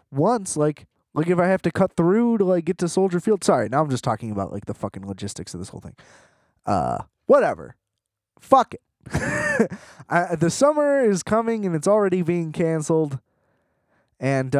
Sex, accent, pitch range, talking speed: male, American, 130-200 Hz, 180 wpm